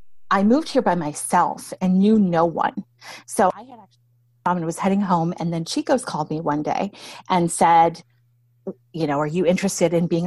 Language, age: English, 30-49